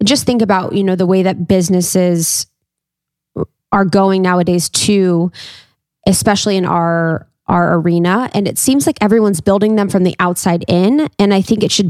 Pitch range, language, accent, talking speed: 175-195 Hz, English, American, 170 wpm